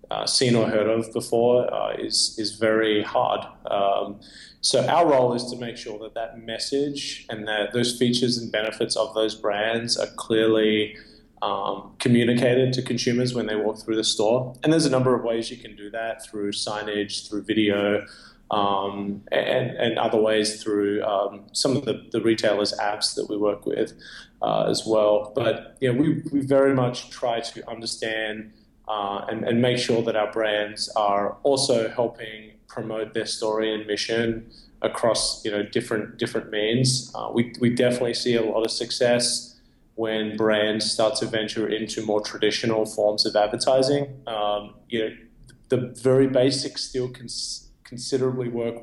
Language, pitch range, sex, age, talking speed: English, 105-125 Hz, male, 20-39, 170 wpm